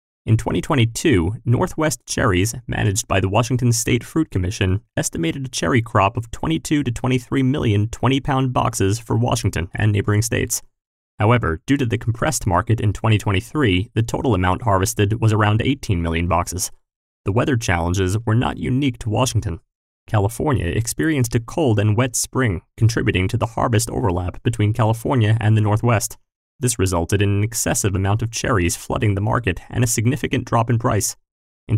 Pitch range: 100-125 Hz